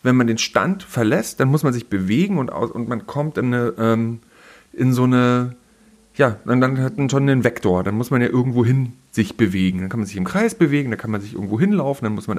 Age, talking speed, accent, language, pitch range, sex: 40-59, 250 wpm, German, German, 110-145 Hz, male